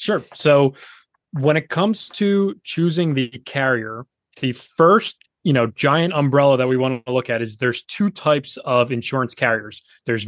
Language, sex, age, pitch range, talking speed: English, male, 20-39, 120-150 Hz, 170 wpm